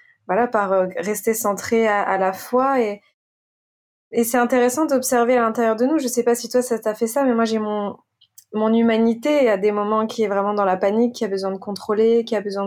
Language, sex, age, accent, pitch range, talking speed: French, female, 20-39, French, 205-240 Hz, 235 wpm